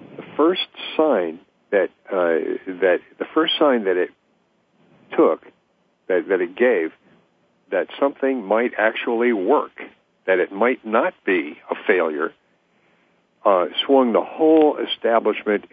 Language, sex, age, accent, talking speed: English, male, 60-79, American, 125 wpm